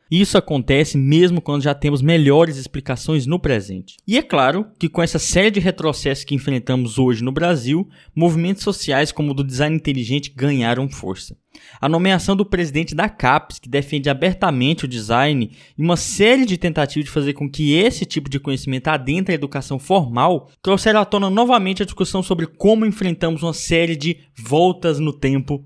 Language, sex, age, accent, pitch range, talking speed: Portuguese, male, 20-39, Brazilian, 135-175 Hz, 180 wpm